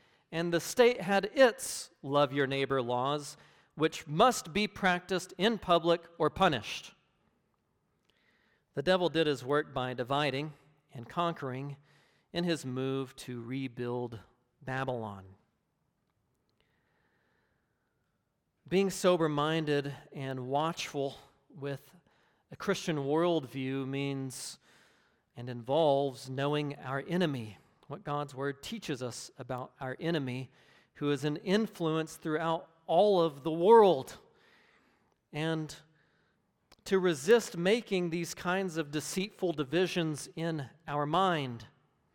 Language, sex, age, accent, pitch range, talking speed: English, male, 40-59, American, 135-170 Hz, 105 wpm